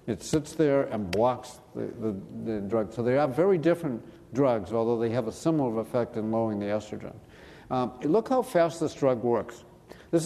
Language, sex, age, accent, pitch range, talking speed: English, male, 50-69, American, 125-165 Hz, 195 wpm